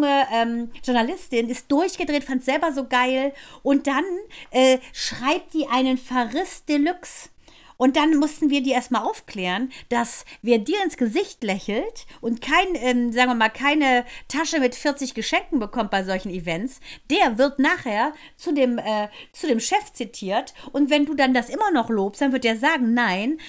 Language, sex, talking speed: German, female, 170 wpm